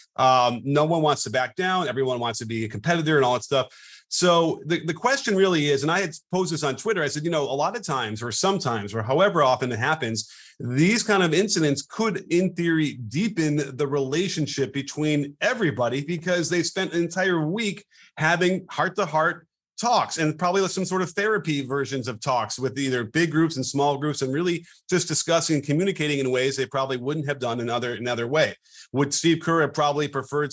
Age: 30-49